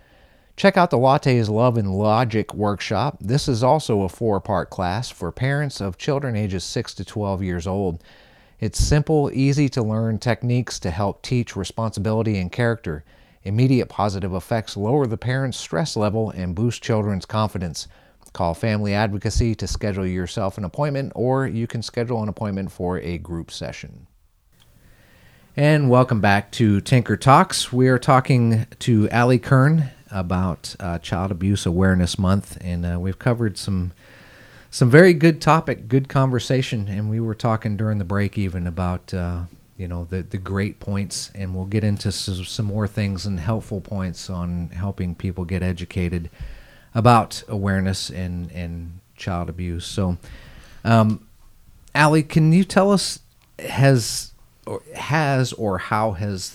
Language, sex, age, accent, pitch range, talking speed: English, male, 30-49, American, 95-125 Hz, 155 wpm